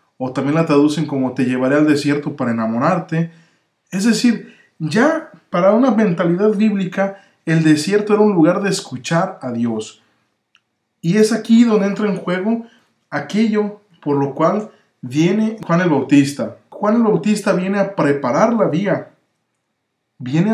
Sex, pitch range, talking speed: male, 140-210 Hz, 150 wpm